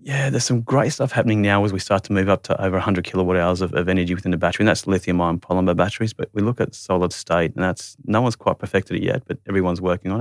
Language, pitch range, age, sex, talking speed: English, 90-105 Hz, 30-49, male, 275 wpm